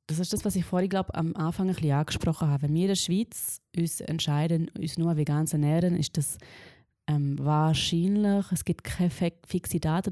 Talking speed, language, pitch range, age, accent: 190 wpm, German, 150-170 Hz, 20-39, German